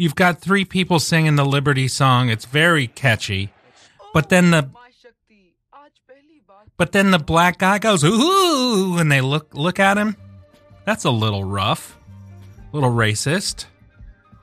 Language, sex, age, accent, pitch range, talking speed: English, male, 30-49, American, 105-160 Hz, 140 wpm